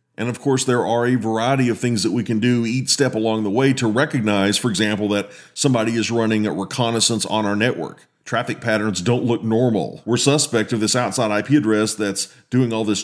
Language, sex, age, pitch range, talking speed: English, male, 40-59, 110-130 Hz, 215 wpm